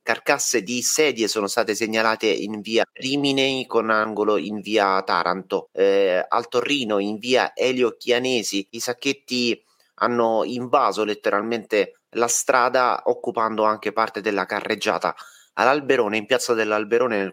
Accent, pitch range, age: native, 105-120 Hz, 30-49